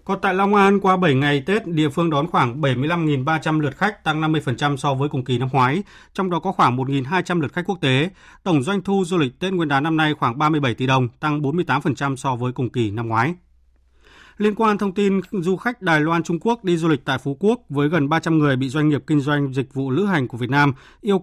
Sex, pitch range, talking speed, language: male, 135-175 Hz, 245 wpm, Vietnamese